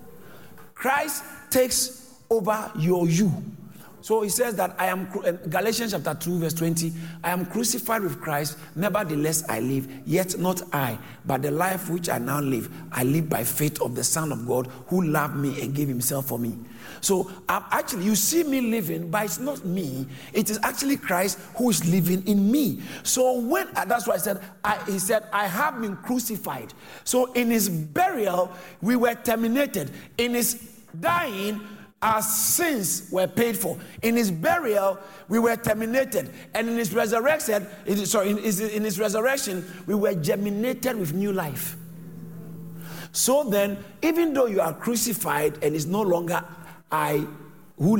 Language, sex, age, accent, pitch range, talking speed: English, male, 50-69, Nigerian, 160-220 Hz, 170 wpm